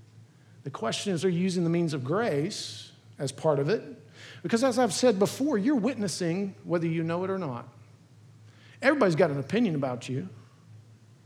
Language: English